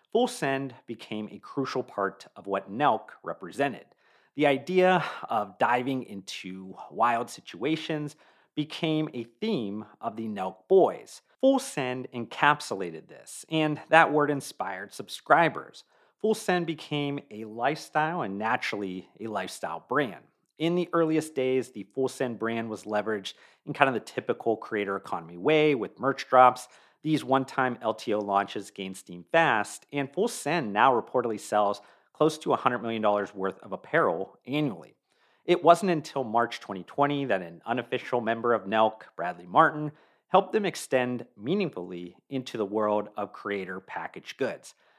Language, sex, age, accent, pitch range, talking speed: English, male, 40-59, American, 105-150 Hz, 145 wpm